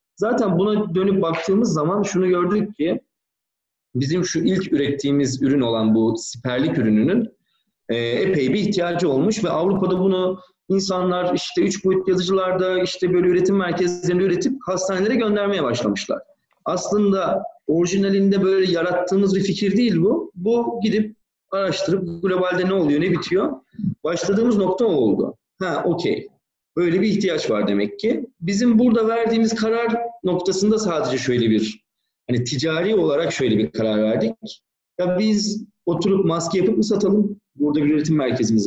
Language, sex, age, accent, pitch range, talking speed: Turkish, male, 40-59, native, 150-205 Hz, 140 wpm